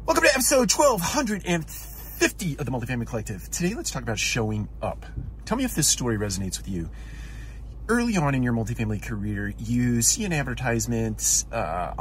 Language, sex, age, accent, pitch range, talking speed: English, male, 30-49, American, 105-130 Hz, 165 wpm